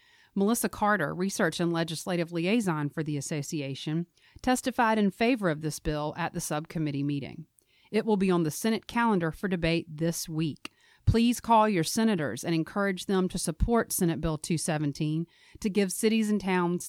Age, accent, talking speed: 40-59, American, 165 wpm